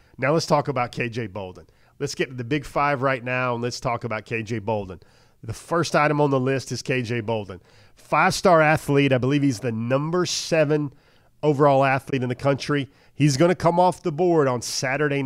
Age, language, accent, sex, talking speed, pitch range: 40-59, English, American, male, 200 wpm, 120-145 Hz